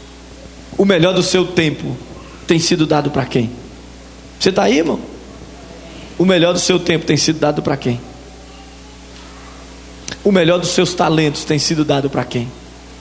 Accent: Brazilian